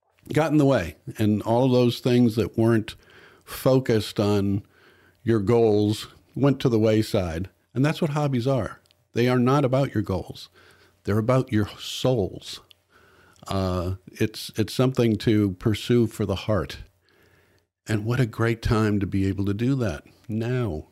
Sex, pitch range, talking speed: male, 100-130 Hz, 160 wpm